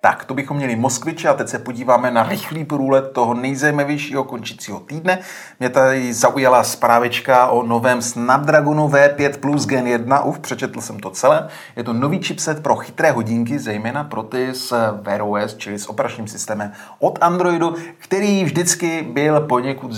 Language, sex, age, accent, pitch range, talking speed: Czech, male, 30-49, native, 115-145 Hz, 165 wpm